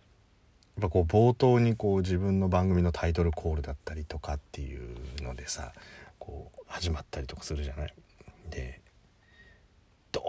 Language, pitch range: Japanese, 75-100 Hz